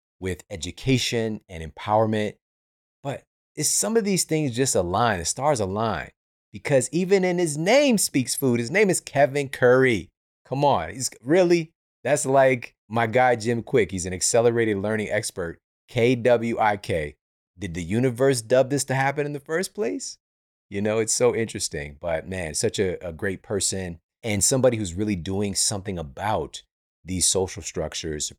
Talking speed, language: 165 wpm, English